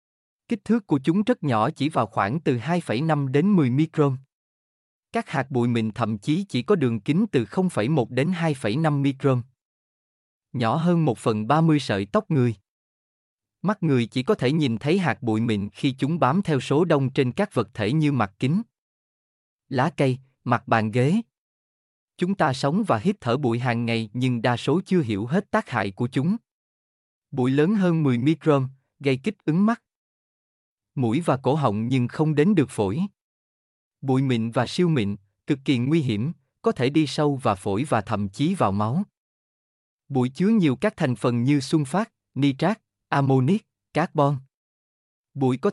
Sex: male